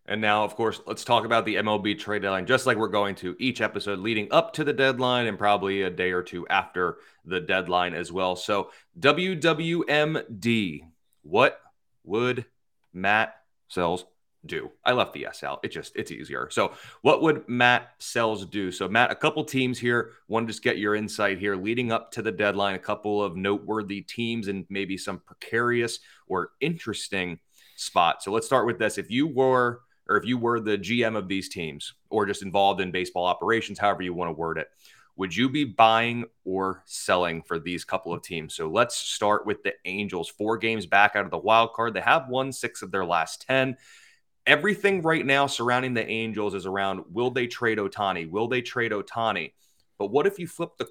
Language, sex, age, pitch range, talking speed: English, male, 30-49, 95-120 Hz, 200 wpm